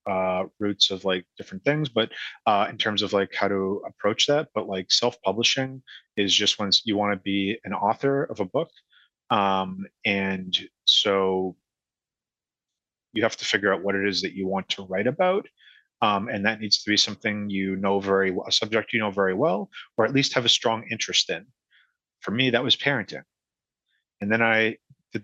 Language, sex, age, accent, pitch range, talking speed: English, male, 30-49, American, 95-110 Hz, 195 wpm